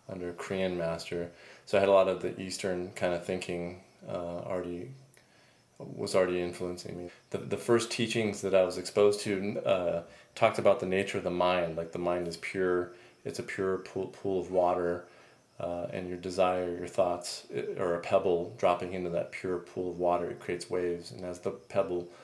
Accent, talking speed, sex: American, 200 wpm, male